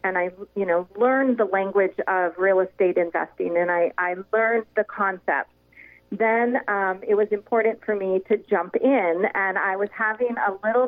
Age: 40-59